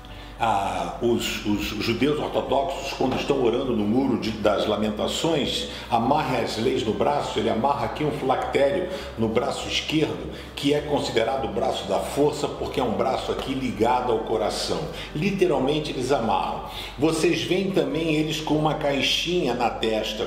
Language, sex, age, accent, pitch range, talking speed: Portuguese, male, 60-79, Brazilian, 130-170 Hz, 155 wpm